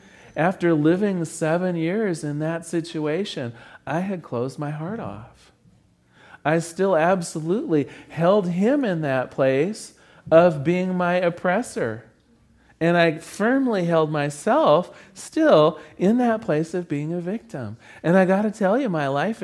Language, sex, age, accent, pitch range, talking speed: English, male, 40-59, American, 145-190 Hz, 140 wpm